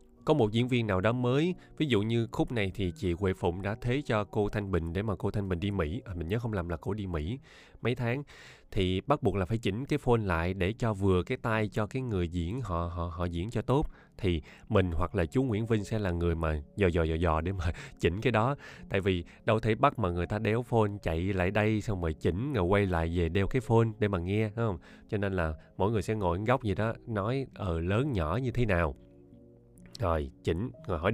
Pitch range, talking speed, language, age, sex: 90-120 Hz, 260 wpm, Vietnamese, 20-39, male